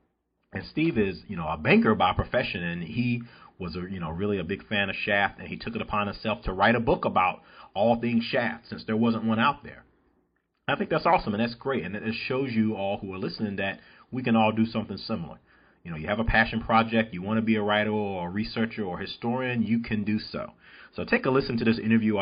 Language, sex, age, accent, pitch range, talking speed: English, male, 40-59, American, 100-120 Hz, 245 wpm